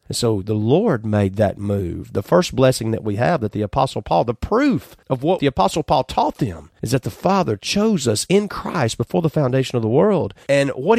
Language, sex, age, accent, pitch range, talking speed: English, male, 40-59, American, 130-190 Hz, 230 wpm